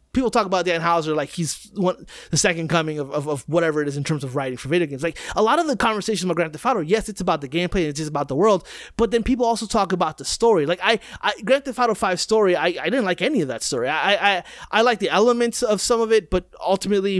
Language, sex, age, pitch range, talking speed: English, male, 30-49, 165-205 Hz, 280 wpm